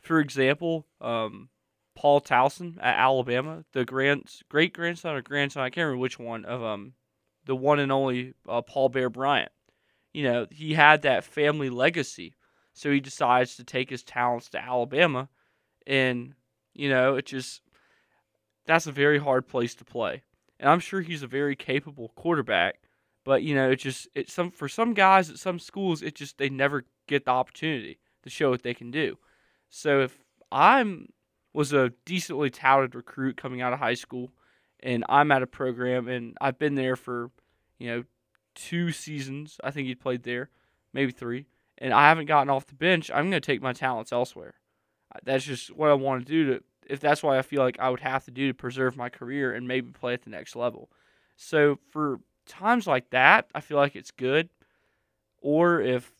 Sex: male